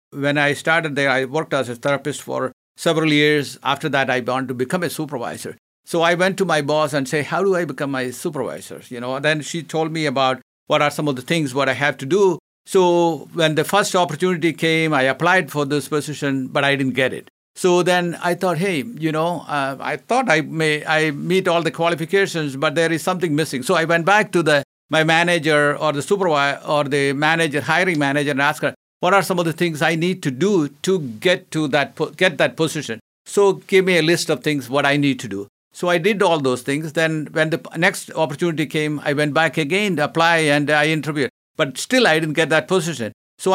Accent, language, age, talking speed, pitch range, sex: Indian, English, 50-69, 230 wpm, 145-175 Hz, male